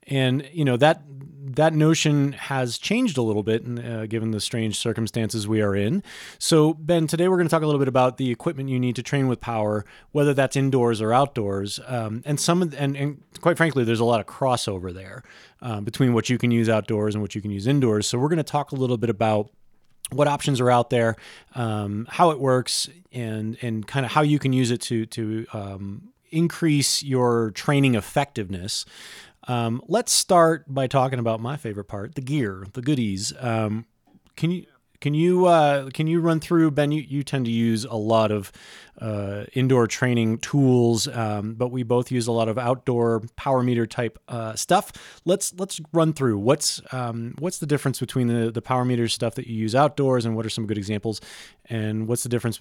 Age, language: 30-49, English